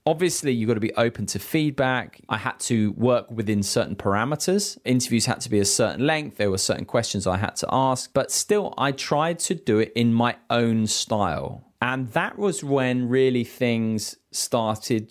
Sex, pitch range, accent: male, 105-145 Hz, British